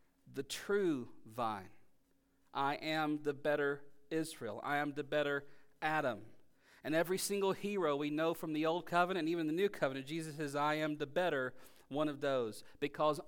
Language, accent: English, American